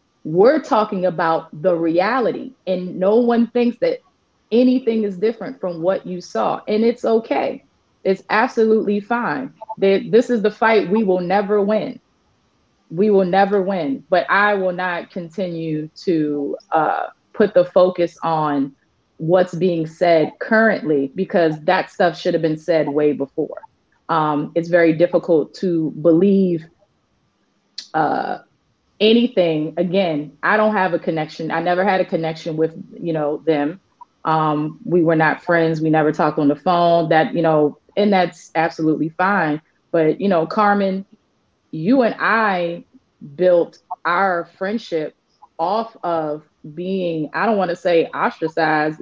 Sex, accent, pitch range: female, American, 160-210 Hz